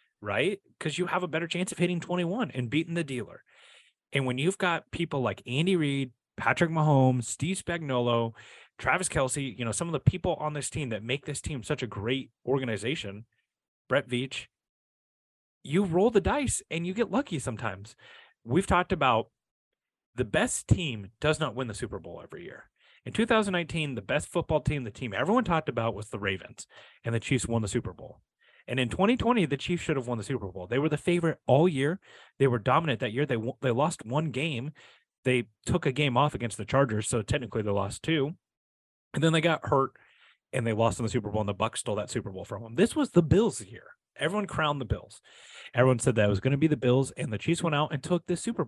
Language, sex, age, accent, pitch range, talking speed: English, male, 30-49, American, 120-165 Hz, 225 wpm